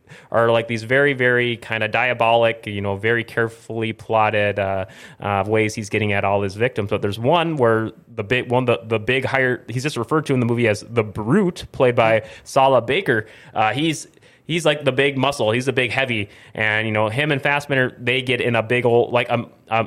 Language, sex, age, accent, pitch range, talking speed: English, male, 30-49, American, 110-140 Hz, 215 wpm